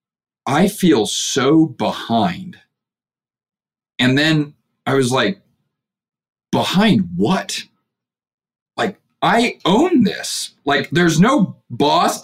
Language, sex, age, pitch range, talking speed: English, male, 40-59, 125-175 Hz, 95 wpm